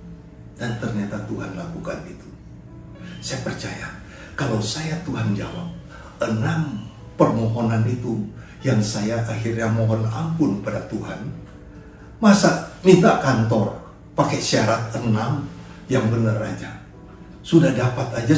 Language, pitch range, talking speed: Indonesian, 110-145 Hz, 110 wpm